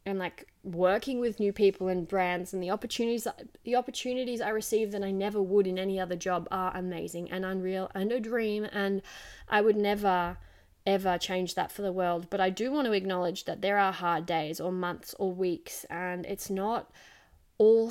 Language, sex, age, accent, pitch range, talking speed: English, female, 10-29, Australian, 180-210 Hz, 200 wpm